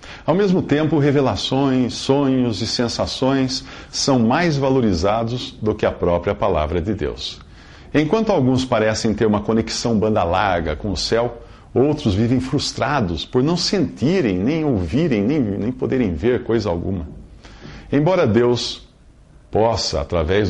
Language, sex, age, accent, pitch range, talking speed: English, male, 60-79, Brazilian, 95-140 Hz, 135 wpm